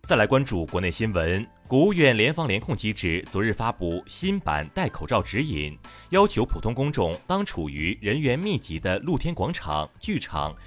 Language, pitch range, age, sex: Chinese, 85-145 Hz, 30-49, male